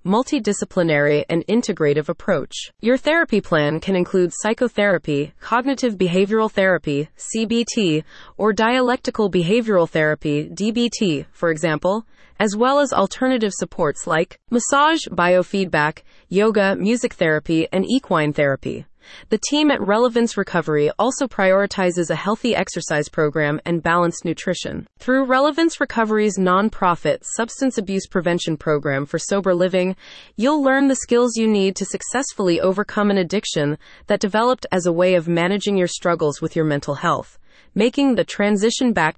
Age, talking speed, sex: 20-39, 135 wpm, female